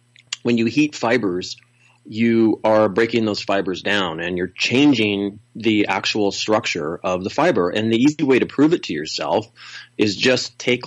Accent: American